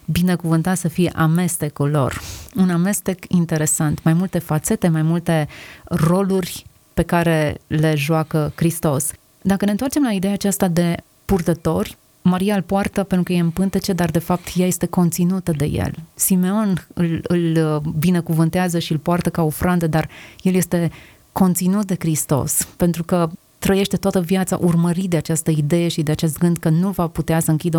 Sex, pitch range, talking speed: female, 160-190 Hz, 165 wpm